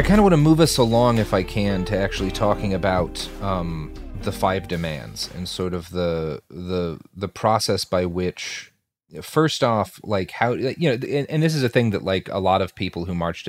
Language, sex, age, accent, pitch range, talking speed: English, male, 30-49, American, 90-115 Hz, 215 wpm